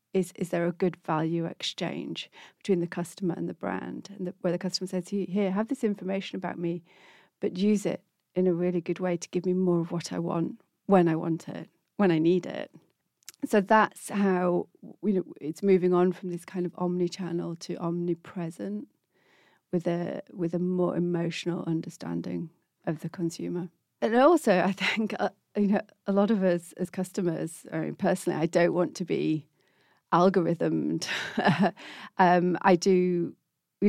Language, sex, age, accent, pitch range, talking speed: English, female, 40-59, British, 175-195 Hz, 180 wpm